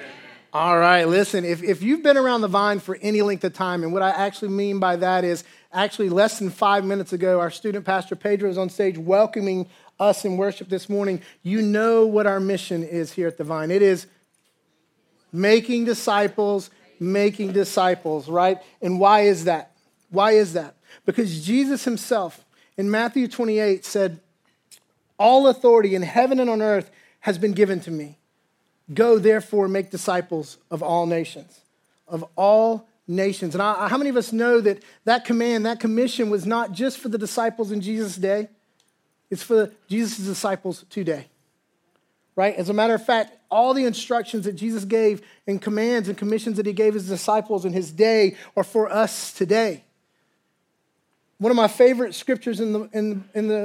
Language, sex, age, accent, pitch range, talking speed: English, male, 40-59, American, 185-220 Hz, 175 wpm